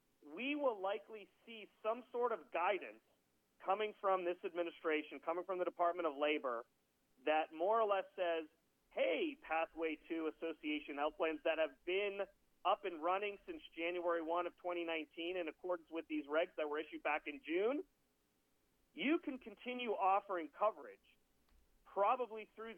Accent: American